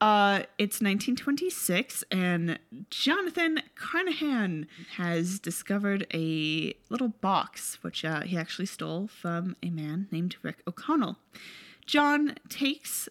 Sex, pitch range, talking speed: female, 170-250 Hz, 110 wpm